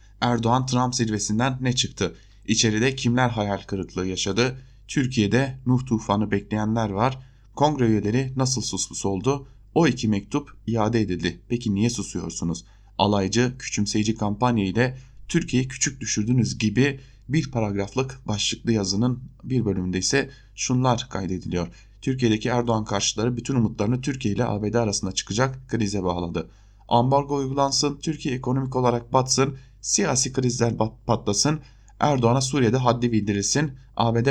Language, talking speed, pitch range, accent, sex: German, 120 wpm, 100-130 Hz, Turkish, male